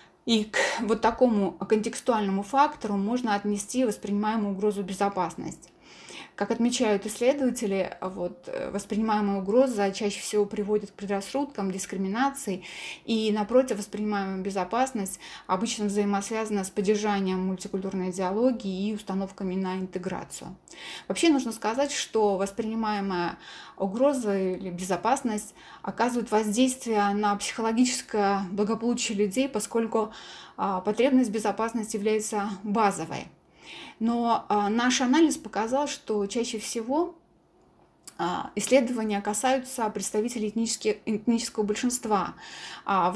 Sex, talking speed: female, 95 wpm